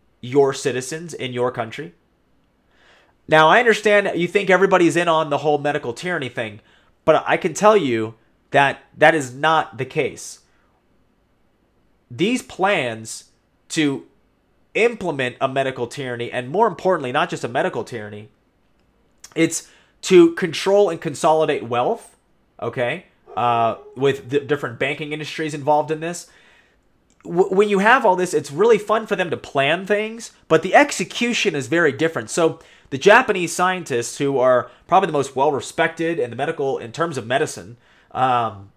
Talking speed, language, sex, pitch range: 150 wpm, English, male, 130-175 Hz